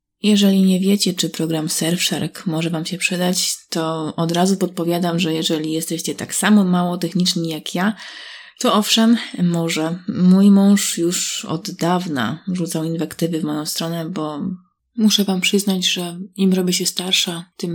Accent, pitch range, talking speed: native, 170-195 Hz, 155 wpm